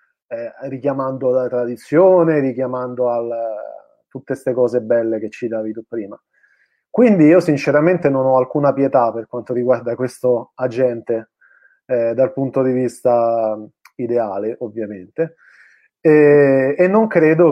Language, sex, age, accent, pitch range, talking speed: Italian, male, 30-49, native, 120-150 Hz, 125 wpm